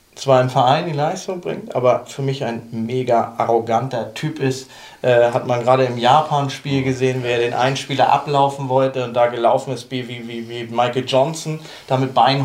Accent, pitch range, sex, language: German, 125-145 Hz, male, German